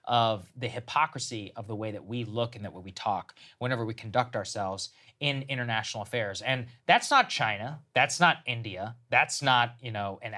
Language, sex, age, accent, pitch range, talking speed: English, male, 20-39, American, 115-165 Hz, 185 wpm